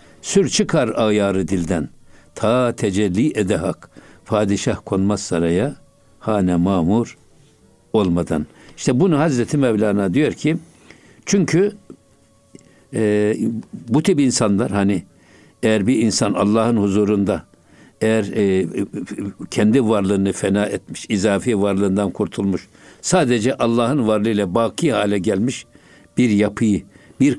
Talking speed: 105 wpm